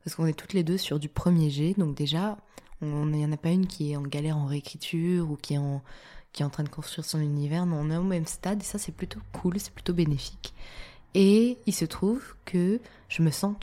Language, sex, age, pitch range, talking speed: French, female, 20-39, 150-180 Hz, 255 wpm